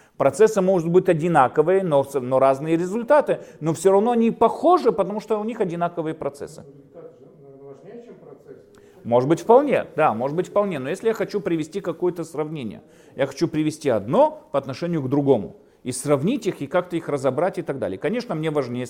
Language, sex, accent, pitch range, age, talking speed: Russian, male, native, 135-180 Hz, 40-59, 170 wpm